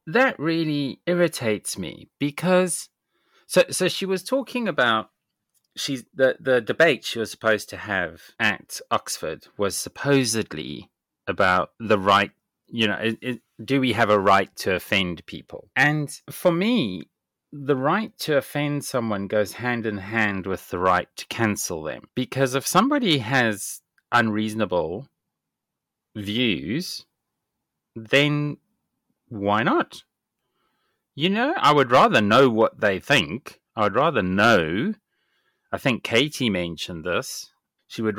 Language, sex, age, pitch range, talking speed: English, male, 30-49, 100-145 Hz, 135 wpm